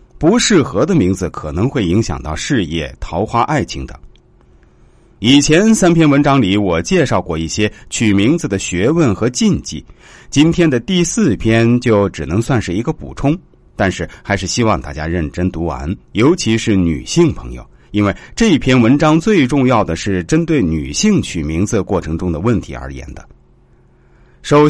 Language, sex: Chinese, male